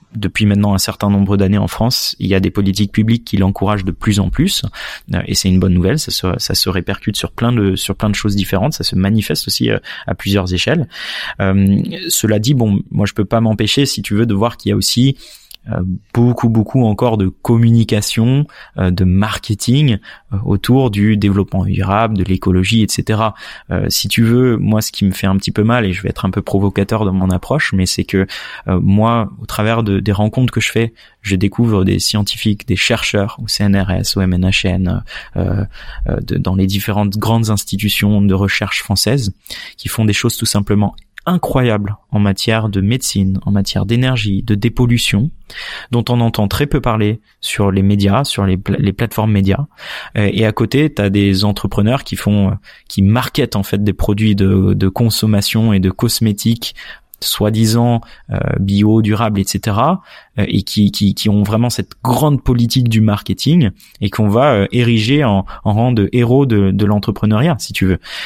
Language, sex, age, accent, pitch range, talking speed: French, male, 20-39, French, 100-115 Hz, 195 wpm